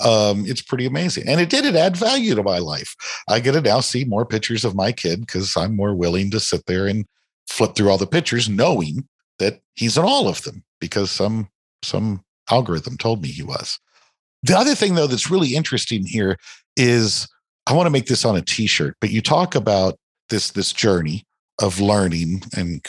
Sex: male